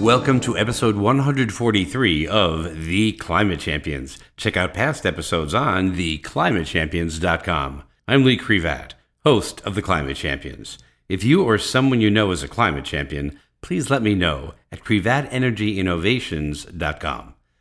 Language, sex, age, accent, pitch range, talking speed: English, male, 50-69, American, 80-125 Hz, 130 wpm